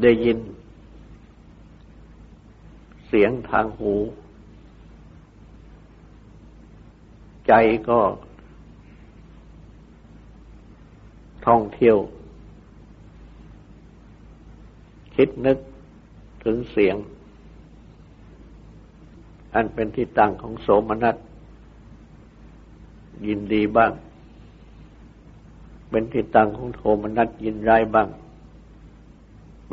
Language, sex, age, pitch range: Thai, male, 60-79, 80-110 Hz